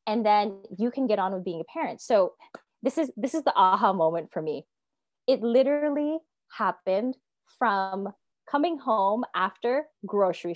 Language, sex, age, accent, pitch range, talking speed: English, female, 20-39, American, 200-280 Hz, 160 wpm